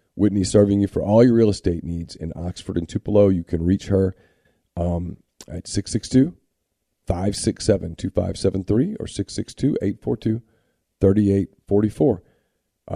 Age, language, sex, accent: 40-59, English, male, American